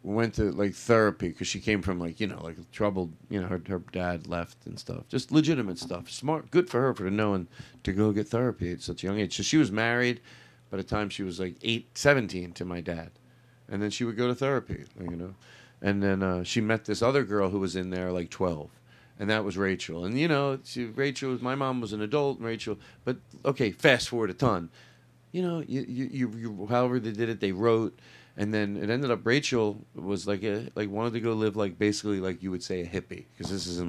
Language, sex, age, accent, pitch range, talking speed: English, male, 40-59, American, 95-125 Hz, 240 wpm